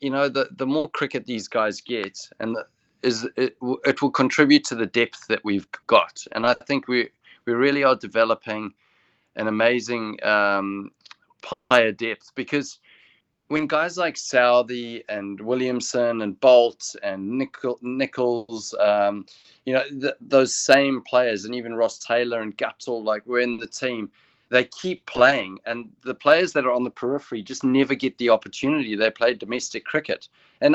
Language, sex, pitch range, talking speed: English, male, 110-135 Hz, 170 wpm